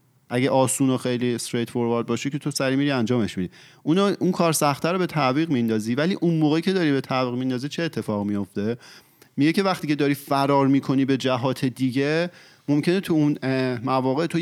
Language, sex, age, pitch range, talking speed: Persian, male, 30-49, 125-155 Hz, 195 wpm